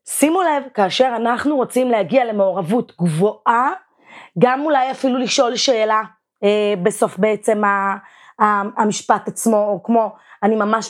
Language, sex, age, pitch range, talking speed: Hebrew, female, 20-39, 210-265 Hz, 130 wpm